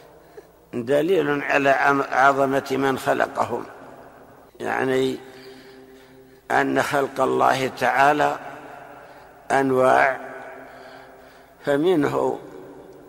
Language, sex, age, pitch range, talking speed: Arabic, male, 60-79, 130-140 Hz, 55 wpm